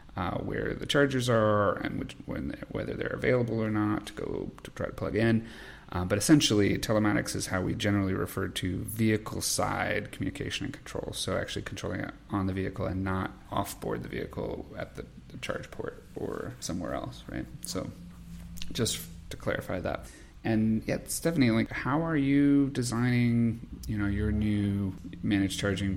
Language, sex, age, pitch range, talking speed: English, male, 30-49, 95-110 Hz, 175 wpm